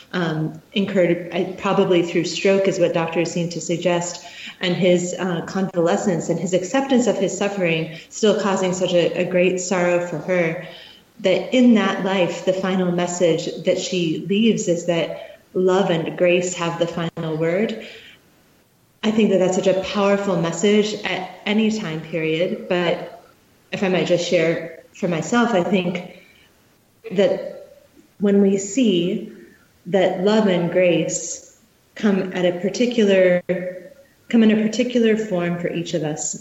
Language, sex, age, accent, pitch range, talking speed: English, female, 30-49, American, 175-205 Hz, 150 wpm